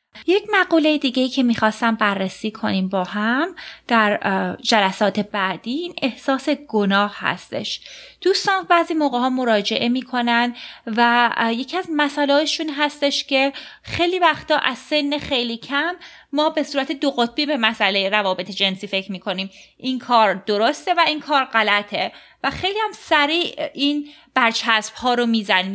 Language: Persian